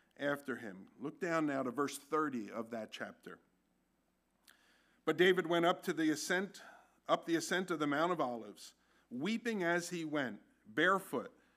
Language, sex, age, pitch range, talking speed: English, male, 50-69, 145-190 Hz, 160 wpm